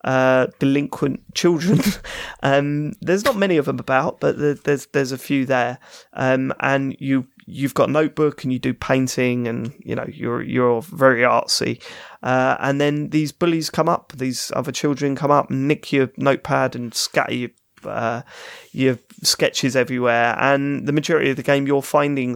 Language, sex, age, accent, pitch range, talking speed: English, male, 20-39, British, 125-150 Hz, 175 wpm